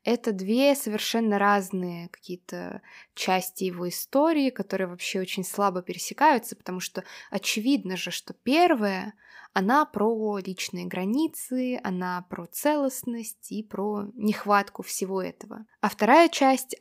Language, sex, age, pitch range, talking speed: Russian, female, 20-39, 195-240 Hz, 120 wpm